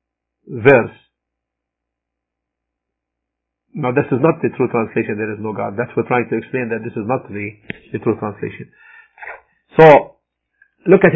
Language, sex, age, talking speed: English, male, 50-69, 160 wpm